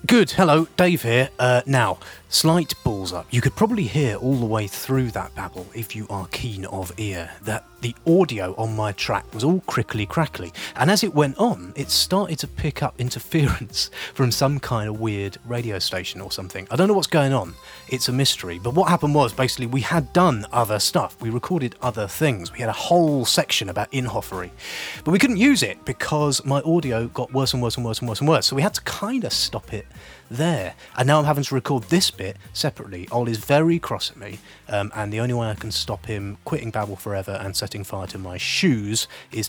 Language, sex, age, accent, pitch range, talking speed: English, male, 30-49, British, 100-145 Hz, 220 wpm